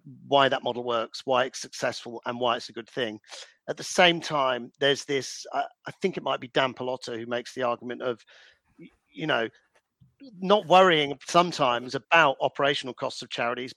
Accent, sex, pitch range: British, male, 125-155 Hz